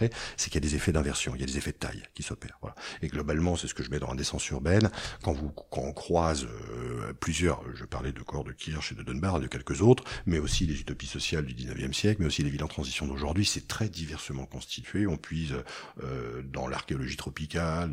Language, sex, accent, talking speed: French, male, French, 245 wpm